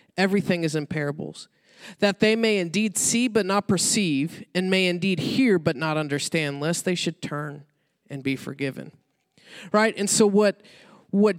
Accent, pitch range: American, 160-220 Hz